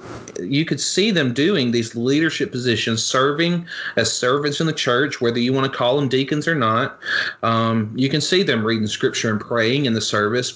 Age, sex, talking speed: 30-49, male, 200 wpm